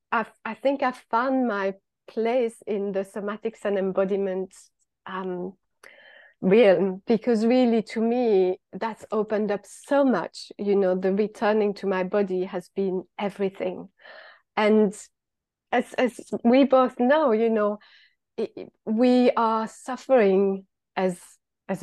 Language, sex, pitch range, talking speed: English, female, 195-240 Hz, 125 wpm